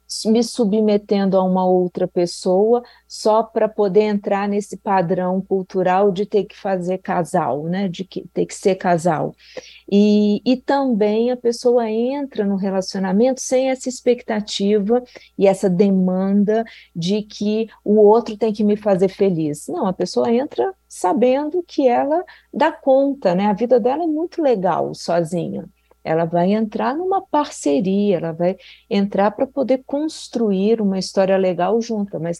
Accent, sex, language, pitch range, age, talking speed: Brazilian, female, Portuguese, 180-220 Hz, 40-59, 150 wpm